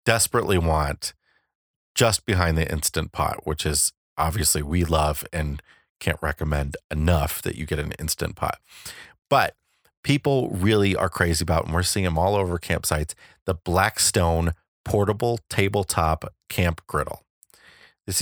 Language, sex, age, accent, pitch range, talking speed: English, male, 30-49, American, 80-95 Hz, 140 wpm